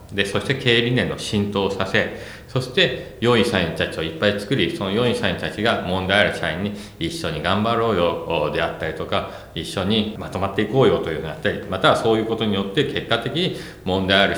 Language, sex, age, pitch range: Japanese, male, 40-59, 95-120 Hz